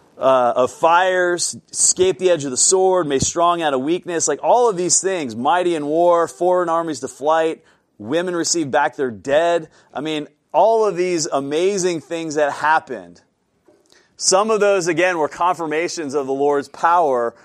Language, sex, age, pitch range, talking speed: English, male, 30-49, 140-175 Hz, 170 wpm